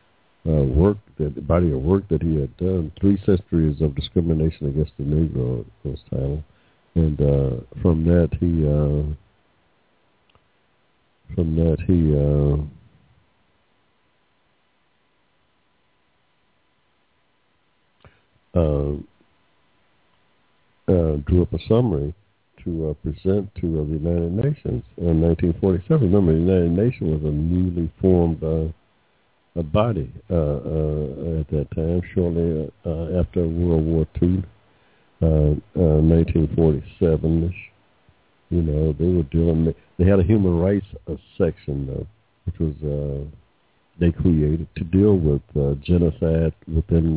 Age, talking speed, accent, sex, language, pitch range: 60-79, 120 wpm, American, male, English, 75-90 Hz